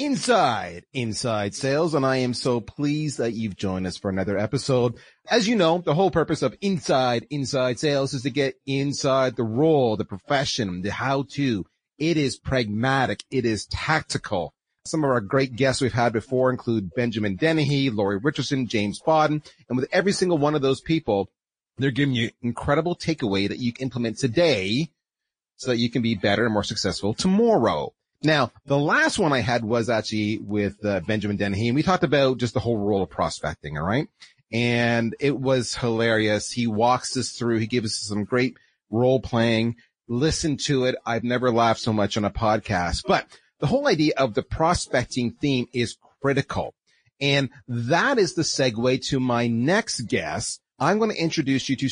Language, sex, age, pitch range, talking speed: English, male, 30-49, 115-145 Hz, 185 wpm